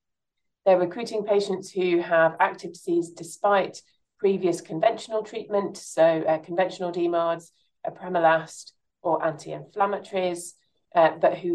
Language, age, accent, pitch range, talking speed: English, 40-59, British, 165-205 Hz, 110 wpm